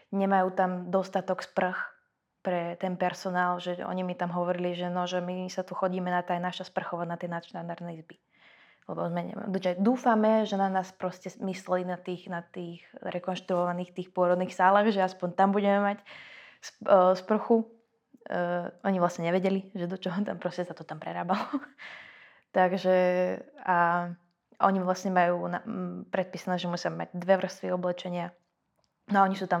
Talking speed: 155 wpm